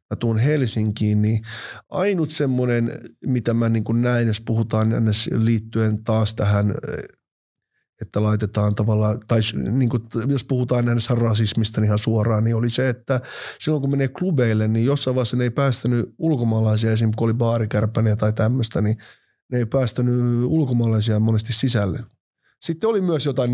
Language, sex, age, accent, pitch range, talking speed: Finnish, male, 20-39, native, 110-120 Hz, 140 wpm